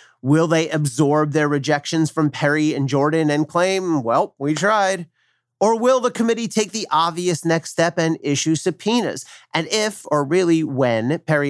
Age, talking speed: 40-59, 165 wpm